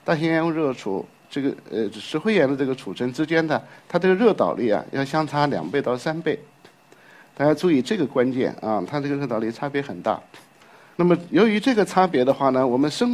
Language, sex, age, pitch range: Chinese, male, 50-69, 130-175 Hz